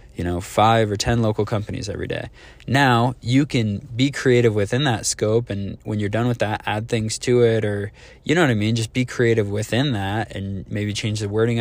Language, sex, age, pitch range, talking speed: English, male, 20-39, 105-120 Hz, 220 wpm